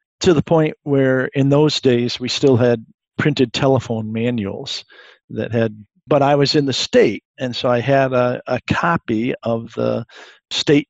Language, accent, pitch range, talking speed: English, American, 115-135 Hz, 170 wpm